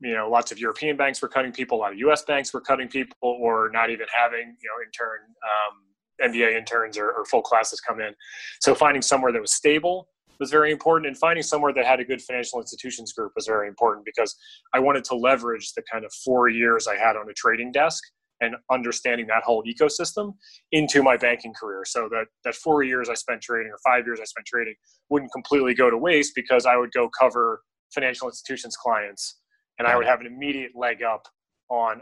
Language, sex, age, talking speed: English, male, 20-39, 215 wpm